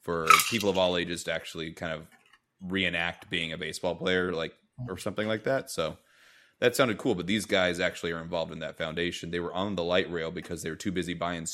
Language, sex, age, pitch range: English, male, 20-39, 85-95 Hz